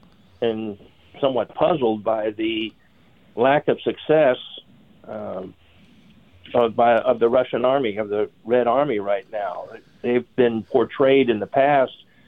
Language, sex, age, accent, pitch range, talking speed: English, male, 50-69, American, 115-145 Hz, 130 wpm